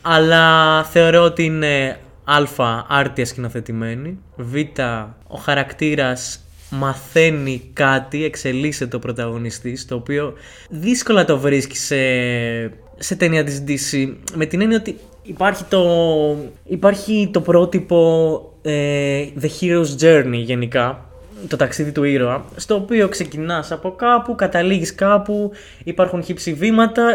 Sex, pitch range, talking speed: male, 135-180 Hz, 115 wpm